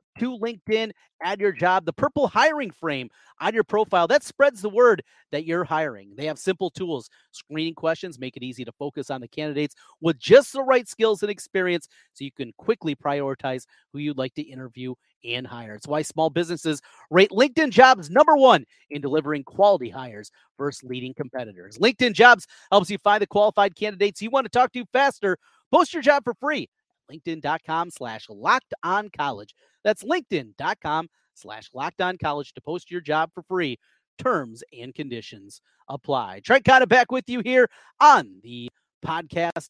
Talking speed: 170 wpm